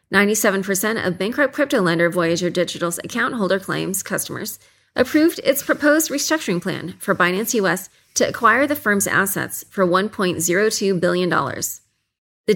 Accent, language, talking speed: American, English, 130 wpm